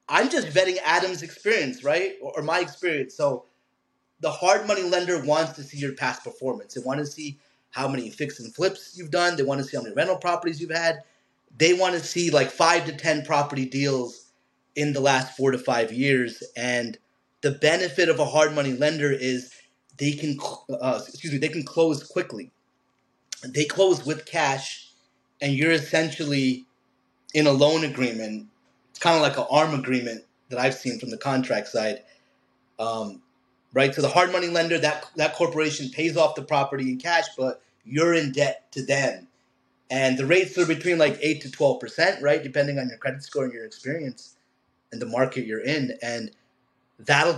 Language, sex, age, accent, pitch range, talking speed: English, male, 30-49, American, 130-170 Hz, 190 wpm